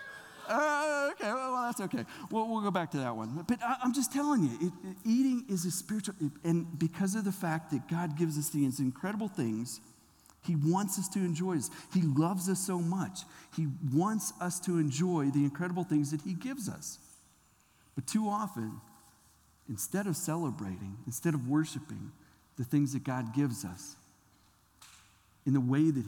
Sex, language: male, English